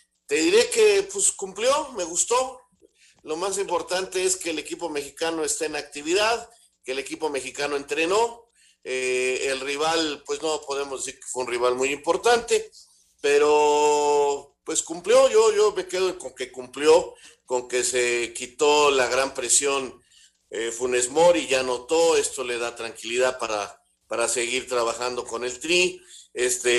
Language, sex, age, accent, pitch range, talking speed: Spanish, male, 50-69, Mexican, 125-175 Hz, 155 wpm